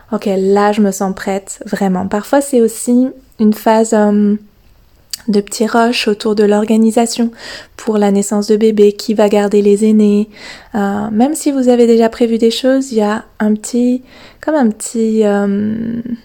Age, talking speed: 20-39, 170 wpm